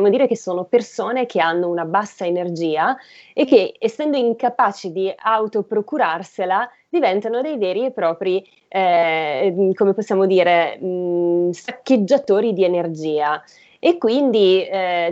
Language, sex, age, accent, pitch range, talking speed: Italian, female, 20-39, native, 180-225 Hz, 120 wpm